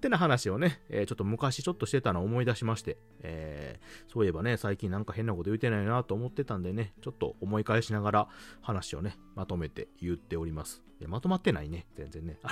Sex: male